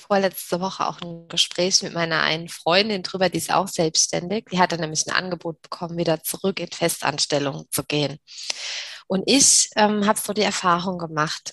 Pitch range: 170-215 Hz